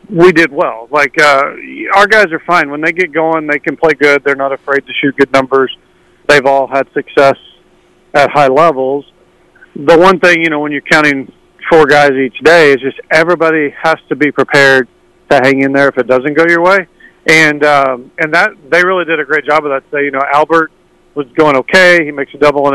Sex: male